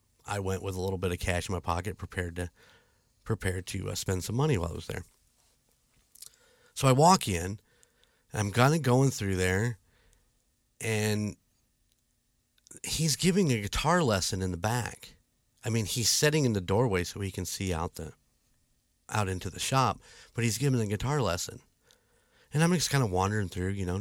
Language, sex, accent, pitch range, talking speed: English, male, American, 95-125 Hz, 185 wpm